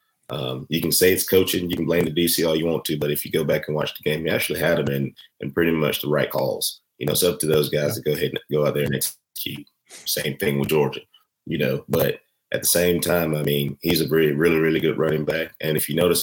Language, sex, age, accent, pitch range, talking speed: English, male, 30-49, American, 75-90 Hz, 280 wpm